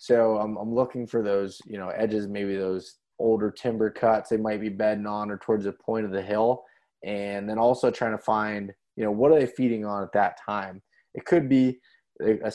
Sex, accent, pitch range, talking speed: male, American, 100-110 Hz, 220 wpm